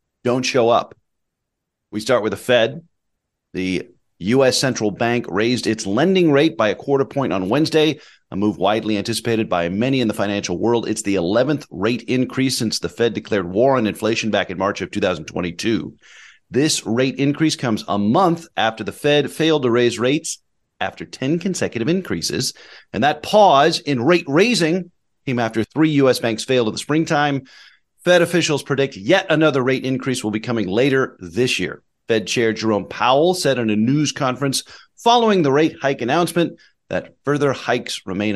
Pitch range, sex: 110-145 Hz, male